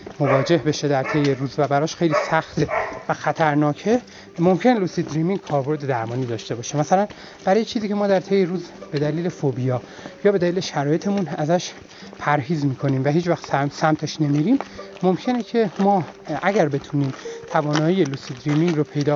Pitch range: 155-215 Hz